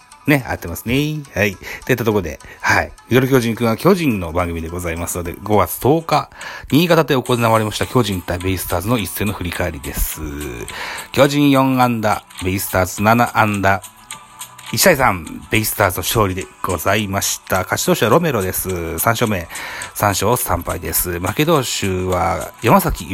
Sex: male